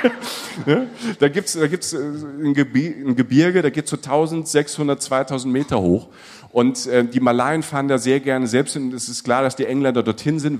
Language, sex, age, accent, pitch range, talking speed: German, male, 40-59, German, 110-140 Hz, 190 wpm